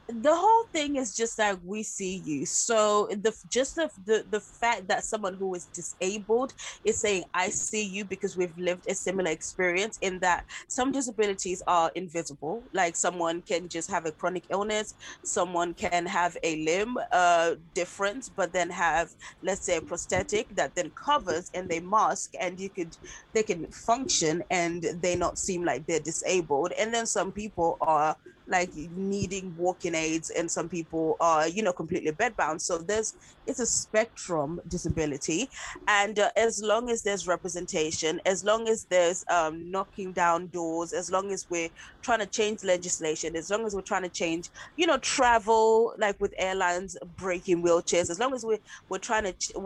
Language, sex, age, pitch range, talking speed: English, female, 20-39, 170-215 Hz, 180 wpm